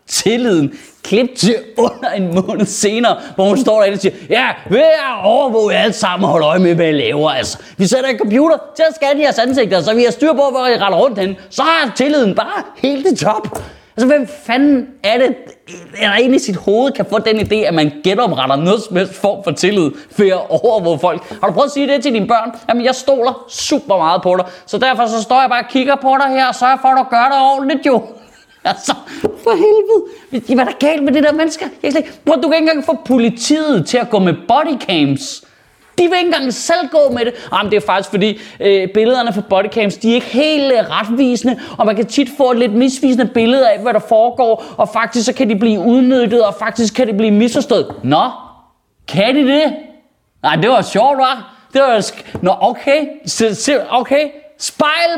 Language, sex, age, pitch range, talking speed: Danish, male, 30-49, 210-280 Hz, 220 wpm